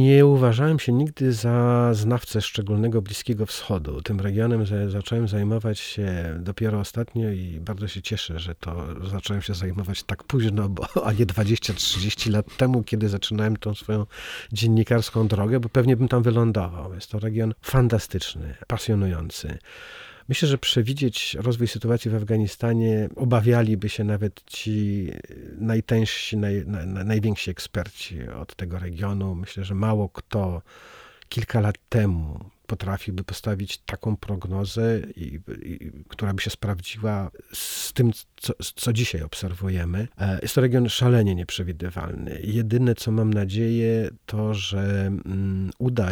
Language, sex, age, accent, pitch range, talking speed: Polish, male, 40-59, native, 95-115 Hz, 130 wpm